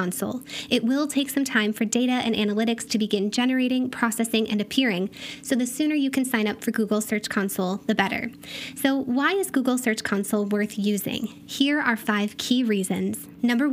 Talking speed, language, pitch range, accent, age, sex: 185 wpm, English, 215-260 Hz, American, 10-29, female